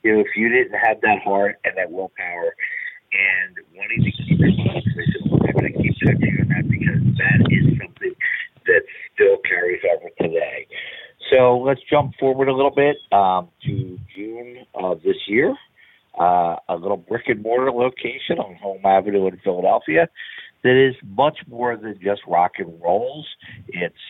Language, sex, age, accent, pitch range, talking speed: English, male, 50-69, American, 100-140 Hz, 165 wpm